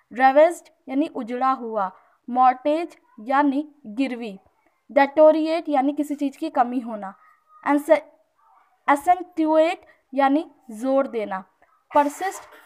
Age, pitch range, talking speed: 20-39, 255-315 Hz, 100 wpm